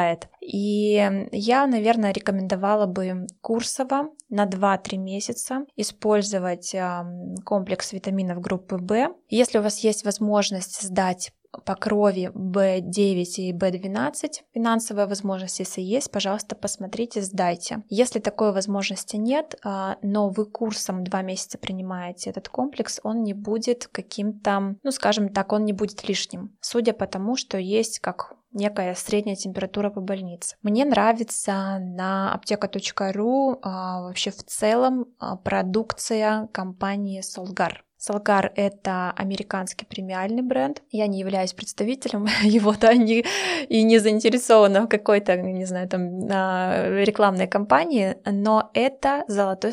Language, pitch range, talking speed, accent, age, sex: Russian, 190-220 Hz, 120 wpm, native, 20-39, female